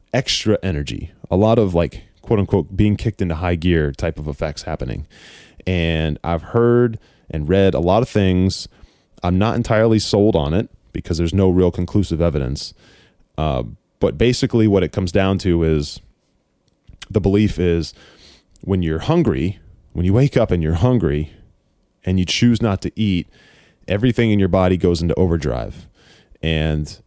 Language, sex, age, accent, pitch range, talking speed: English, male, 20-39, American, 80-100 Hz, 165 wpm